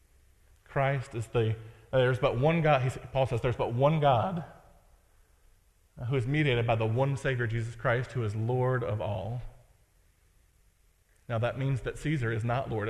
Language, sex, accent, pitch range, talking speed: English, male, American, 110-140 Hz, 170 wpm